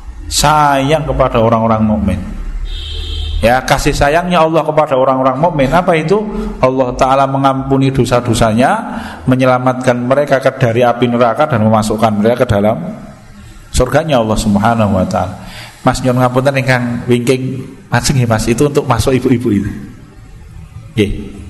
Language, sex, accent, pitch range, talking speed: Indonesian, male, native, 110-140 Hz, 130 wpm